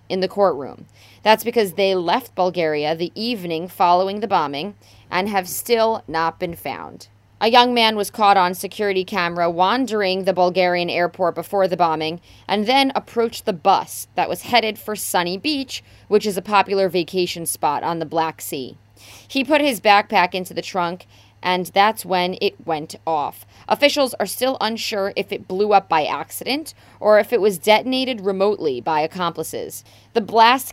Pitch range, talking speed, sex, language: 175-215 Hz, 170 wpm, female, English